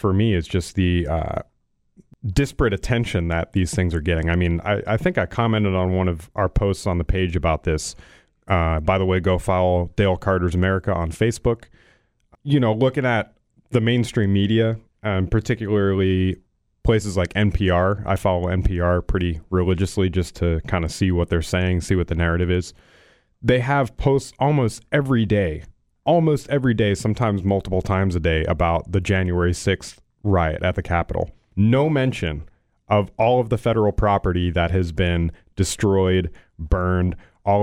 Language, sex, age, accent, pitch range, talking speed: English, male, 30-49, American, 90-110 Hz, 170 wpm